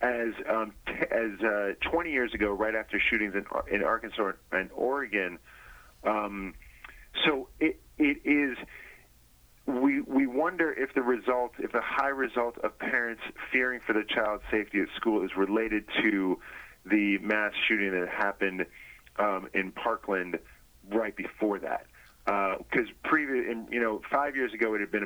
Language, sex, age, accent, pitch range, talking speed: English, male, 30-49, American, 100-125 Hz, 160 wpm